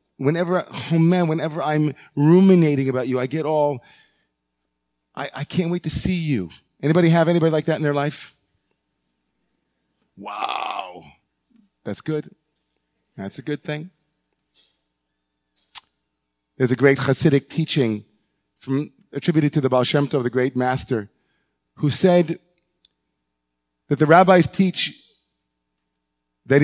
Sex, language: male, English